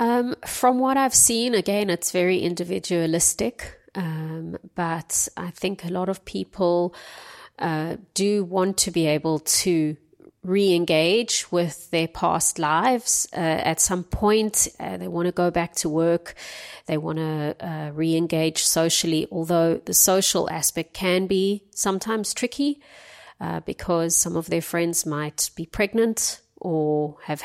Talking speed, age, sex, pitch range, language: 140 wpm, 30-49, female, 160-190 Hz, English